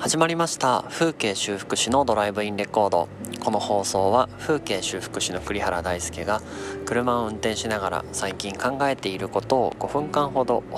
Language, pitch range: Japanese, 90-125 Hz